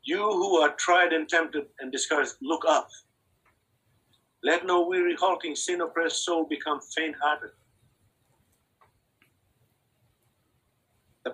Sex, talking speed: male, 100 wpm